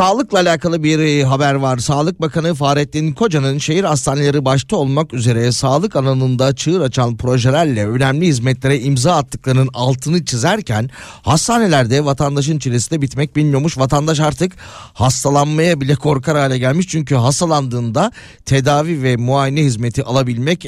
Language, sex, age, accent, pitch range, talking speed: Turkish, male, 30-49, native, 125-155 Hz, 130 wpm